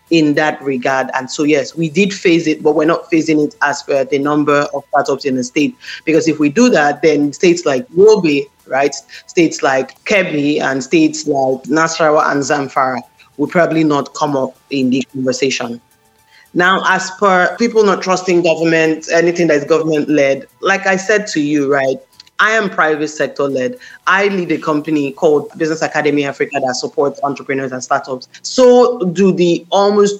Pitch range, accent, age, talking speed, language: 145-175 Hz, Nigerian, 30-49, 180 wpm, English